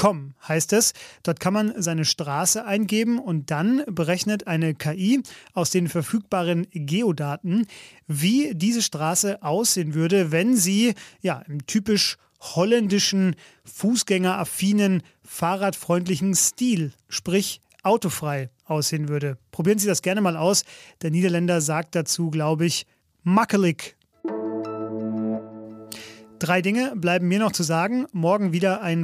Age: 30-49